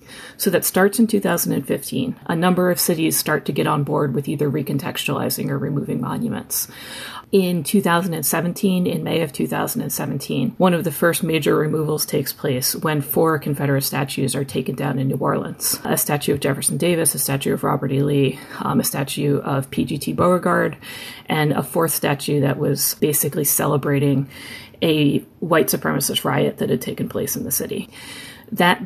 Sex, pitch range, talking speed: female, 140-175 Hz, 170 wpm